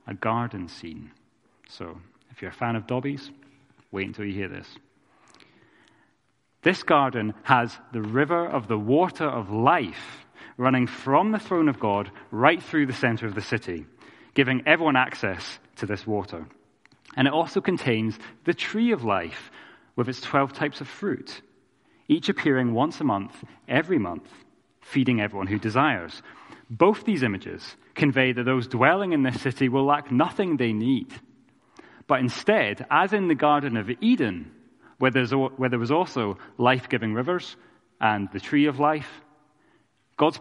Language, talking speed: English, 155 wpm